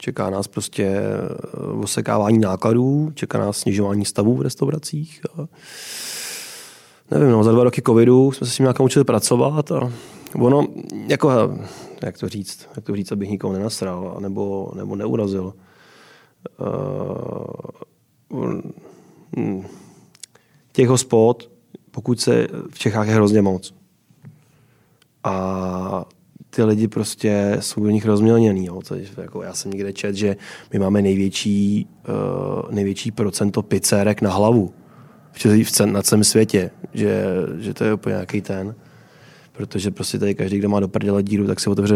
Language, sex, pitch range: Czech, male, 100-115 Hz